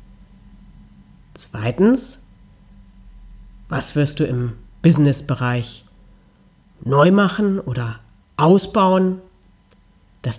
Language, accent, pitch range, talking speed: German, German, 100-160 Hz, 65 wpm